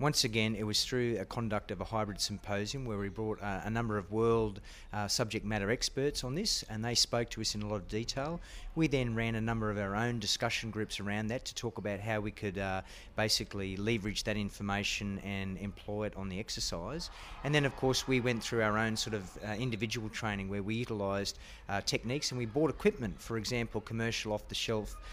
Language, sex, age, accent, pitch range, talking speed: English, male, 30-49, Australian, 100-115 Hz, 215 wpm